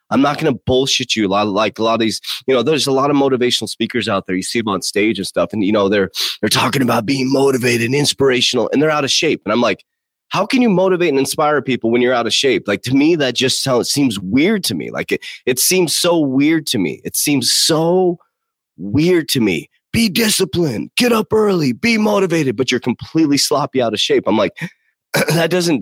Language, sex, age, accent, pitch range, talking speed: English, male, 30-49, American, 125-170 Hz, 240 wpm